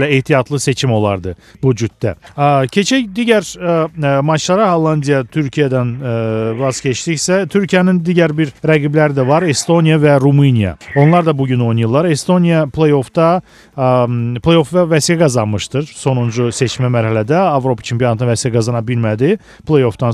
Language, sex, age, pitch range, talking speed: Russian, male, 40-59, 125-165 Hz, 90 wpm